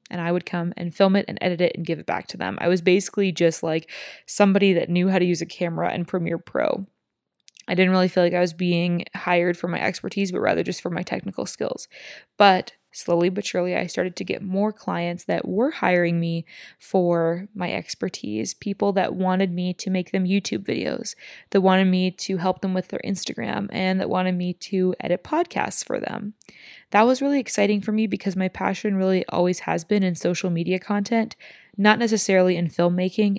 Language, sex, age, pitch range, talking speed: English, female, 20-39, 175-200 Hz, 210 wpm